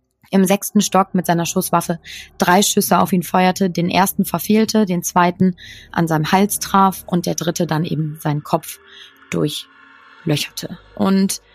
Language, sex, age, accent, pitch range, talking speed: German, female, 20-39, German, 180-210 Hz, 150 wpm